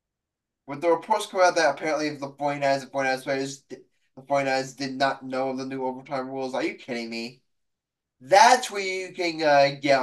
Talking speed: 190 wpm